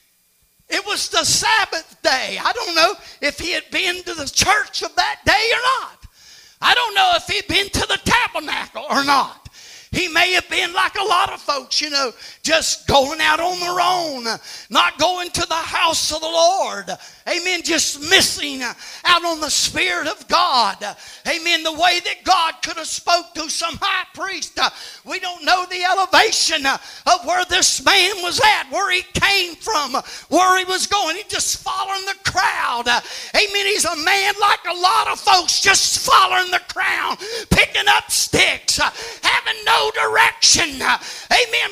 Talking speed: 175 wpm